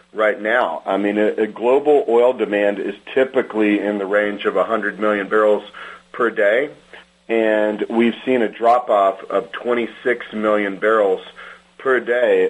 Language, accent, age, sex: English, American, 40-59, male